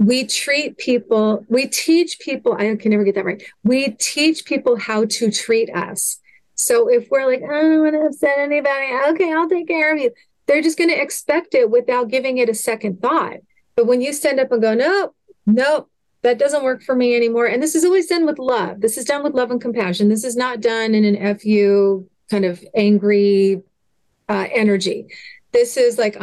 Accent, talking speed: American, 210 wpm